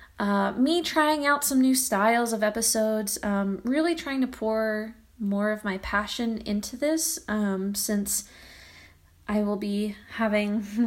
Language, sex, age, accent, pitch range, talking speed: English, female, 20-39, American, 195-225 Hz, 145 wpm